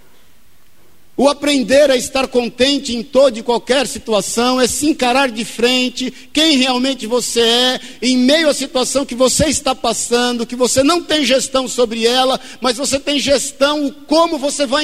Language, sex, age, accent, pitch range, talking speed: Portuguese, male, 50-69, Brazilian, 250-285 Hz, 170 wpm